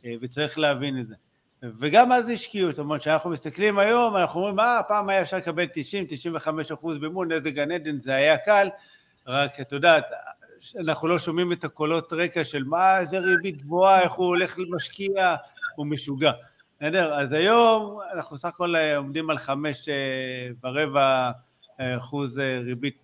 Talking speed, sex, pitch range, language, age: 160 wpm, male, 135-175 Hz, Hebrew, 50-69